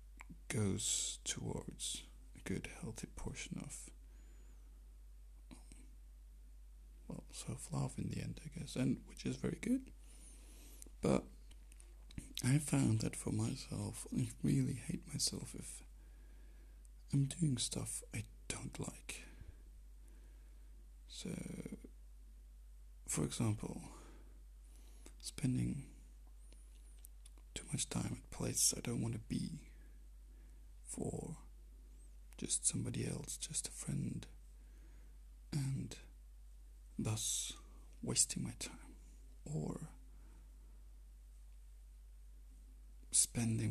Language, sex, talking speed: English, male, 90 wpm